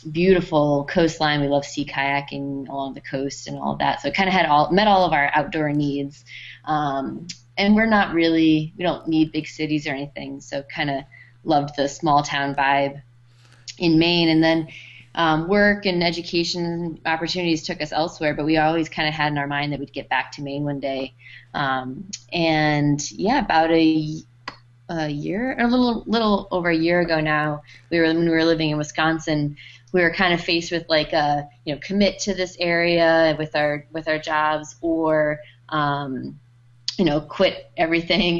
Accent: American